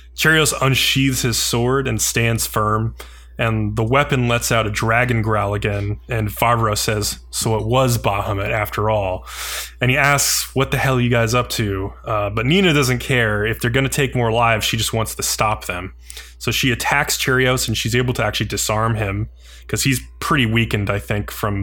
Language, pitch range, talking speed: English, 105-125 Hz, 200 wpm